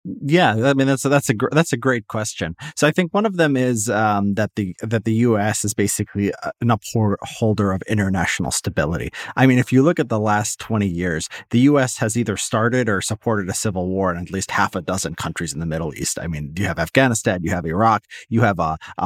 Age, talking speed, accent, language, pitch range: 30-49, 235 wpm, American, English, 95-125 Hz